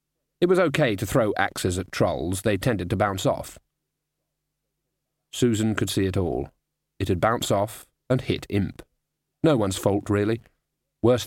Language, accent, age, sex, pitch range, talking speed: English, British, 40-59, male, 105-140 Hz, 160 wpm